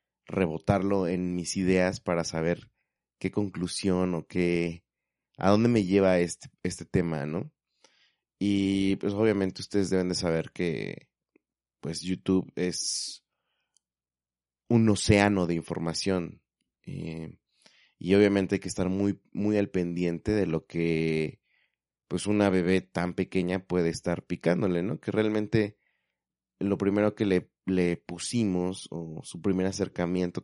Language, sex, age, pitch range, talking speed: Spanish, male, 30-49, 85-100 Hz, 130 wpm